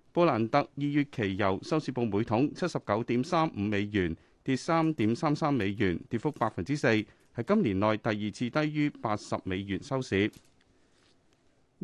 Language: Chinese